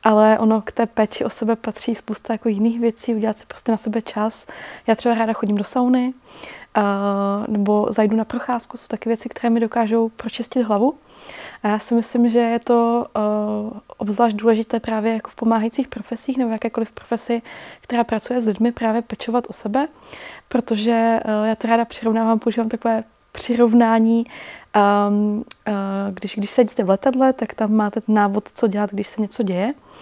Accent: native